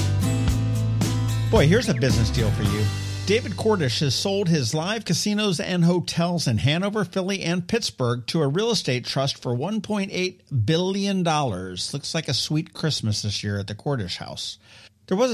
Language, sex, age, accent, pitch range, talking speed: English, male, 50-69, American, 115-175 Hz, 165 wpm